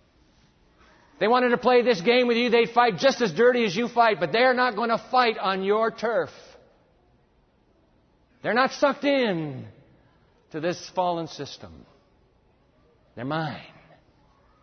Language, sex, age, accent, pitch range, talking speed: English, male, 50-69, American, 140-225 Hz, 145 wpm